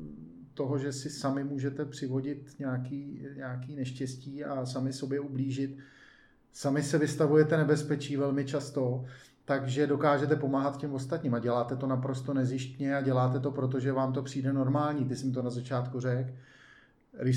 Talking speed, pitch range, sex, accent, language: 150 wpm, 125-145 Hz, male, native, Czech